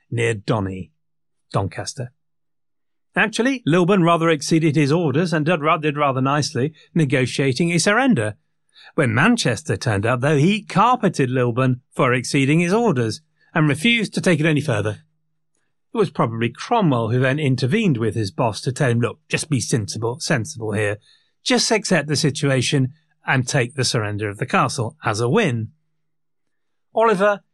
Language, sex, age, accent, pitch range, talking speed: English, male, 40-59, British, 125-170 Hz, 155 wpm